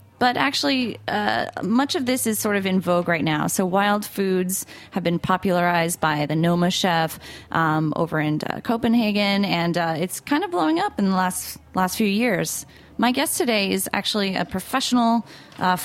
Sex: female